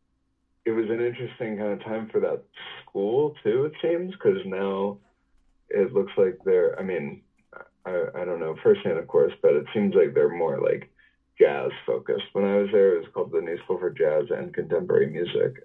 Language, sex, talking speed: English, male, 200 wpm